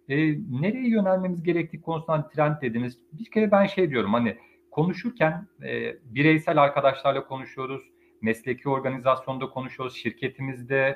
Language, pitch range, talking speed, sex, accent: Turkish, 130-175 Hz, 120 wpm, male, native